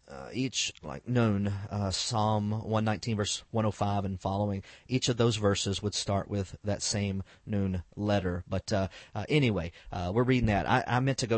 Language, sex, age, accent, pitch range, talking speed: English, male, 40-59, American, 105-120 Hz, 180 wpm